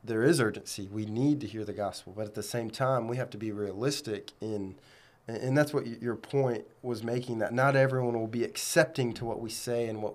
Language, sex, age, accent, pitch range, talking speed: English, male, 20-39, American, 105-130 Hz, 230 wpm